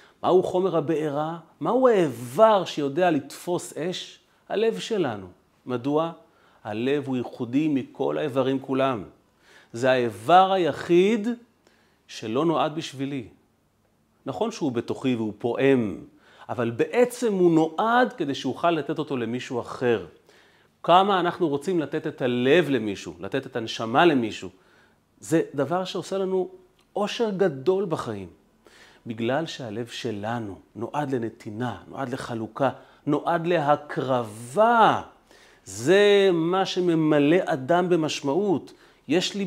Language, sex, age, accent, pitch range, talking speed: Hebrew, male, 40-59, native, 125-180 Hz, 110 wpm